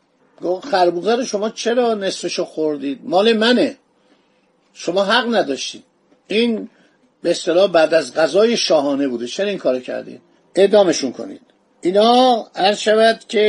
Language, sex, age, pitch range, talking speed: Persian, male, 50-69, 180-230 Hz, 120 wpm